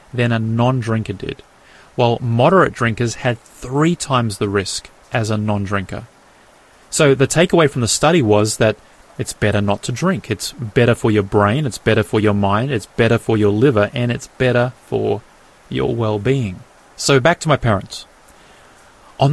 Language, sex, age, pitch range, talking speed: English, male, 30-49, 110-140 Hz, 170 wpm